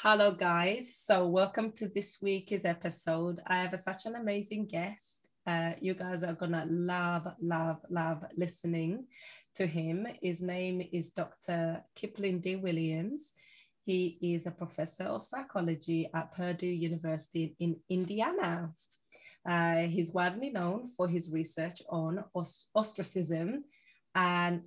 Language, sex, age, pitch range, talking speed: English, female, 20-39, 165-195 Hz, 135 wpm